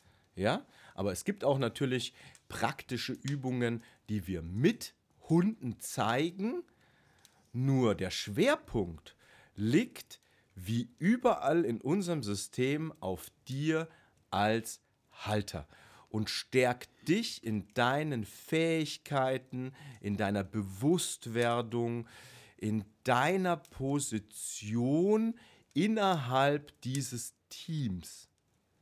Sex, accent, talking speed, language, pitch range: male, German, 85 wpm, German, 105-145 Hz